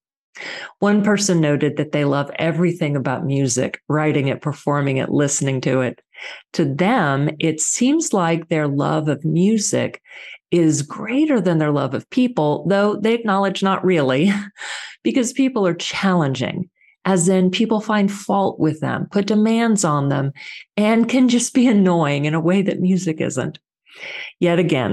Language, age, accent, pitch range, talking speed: English, 40-59, American, 145-205 Hz, 155 wpm